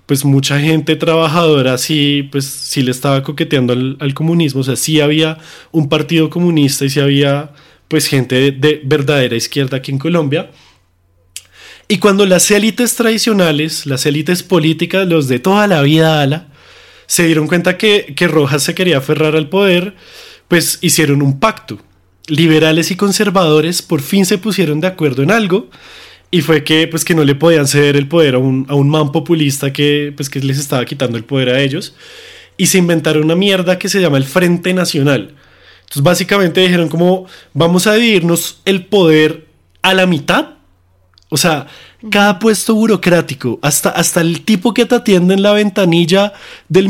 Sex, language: male, Spanish